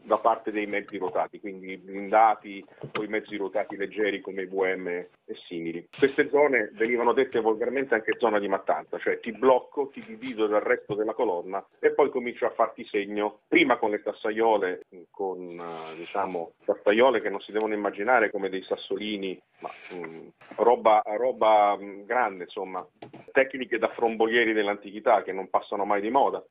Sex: male